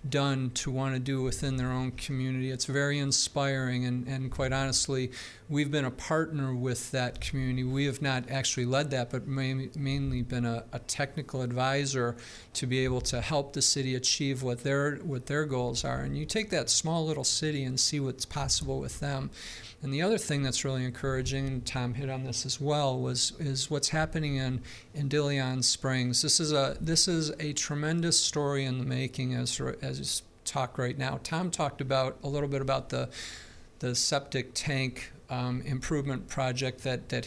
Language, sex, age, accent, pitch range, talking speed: English, male, 50-69, American, 130-145 Hz, 190 wpm